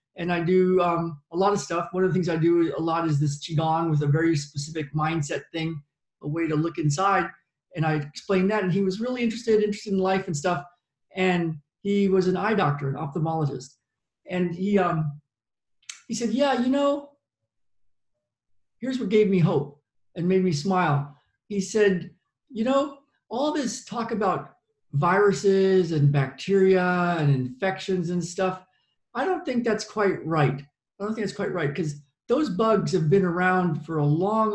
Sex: male